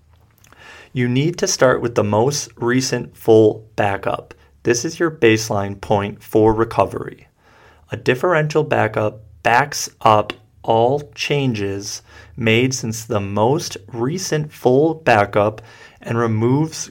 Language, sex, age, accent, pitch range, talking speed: English, male, 30-49, American, 105-130 Hz, 115 wpm